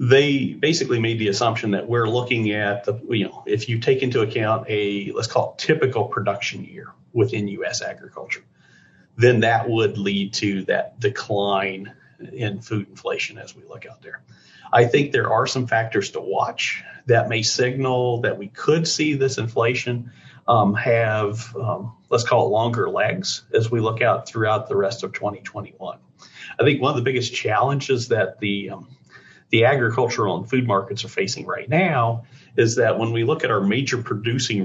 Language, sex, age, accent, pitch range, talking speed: English, male, 40-59, American, 100-130 Hz, 180 wpm